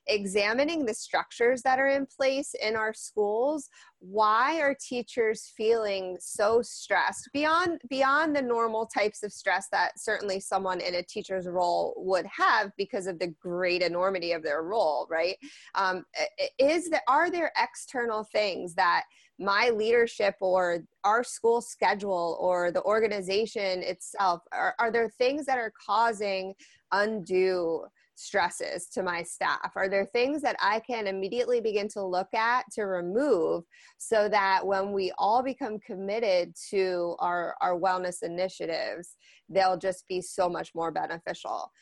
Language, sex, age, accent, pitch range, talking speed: English, female, 20-39, American, 185-235 Hz, 150 wpm